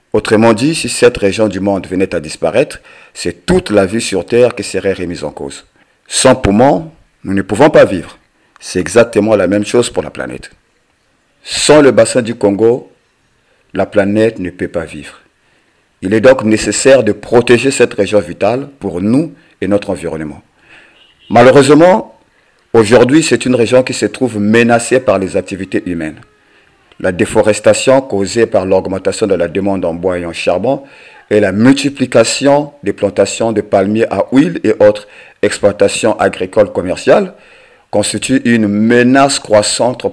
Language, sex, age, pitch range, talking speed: French, male, 50-69, 100-130 Hz, 155 wpm